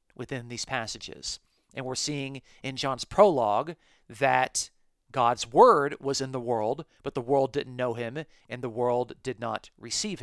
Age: 40-59